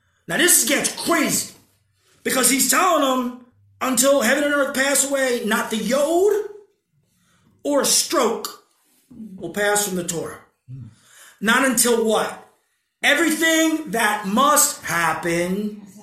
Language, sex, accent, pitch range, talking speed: English, male, American, 220-290 Hz, 120 wpm